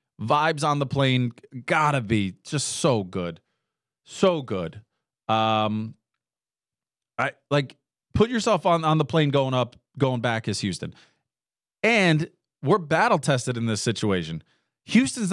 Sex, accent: male, American